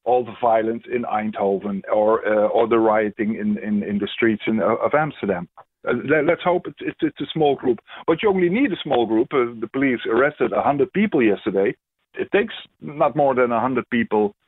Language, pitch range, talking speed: English, 115-145 Hz, 205 wpm